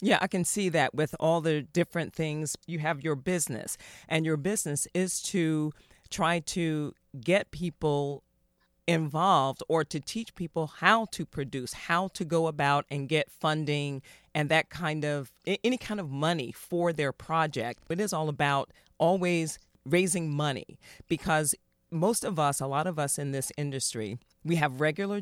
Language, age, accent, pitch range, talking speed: English, 40-59, American, 135-165 Hz, 165 wpm